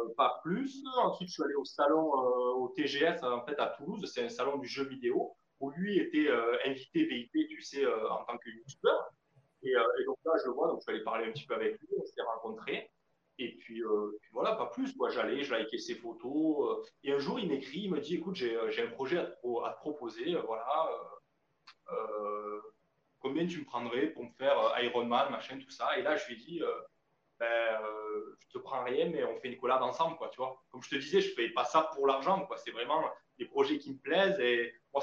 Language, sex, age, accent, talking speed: French, male, 20-39, French, 255 wpm